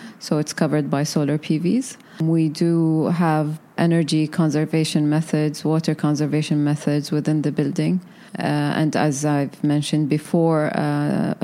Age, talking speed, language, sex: 20-39, 130 wpm, English, female